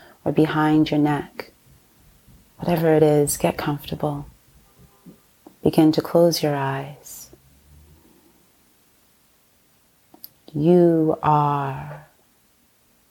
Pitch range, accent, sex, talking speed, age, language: 150-165 Hz, American, female, 75 wpm, 30-49, English